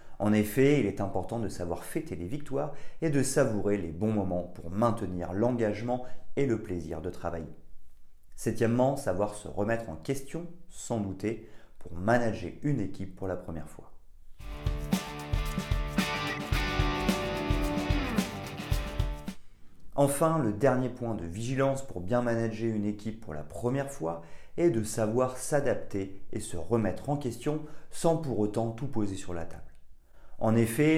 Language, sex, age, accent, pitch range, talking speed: French, male, 40-59, French, 95-125 Hz, 145 wpm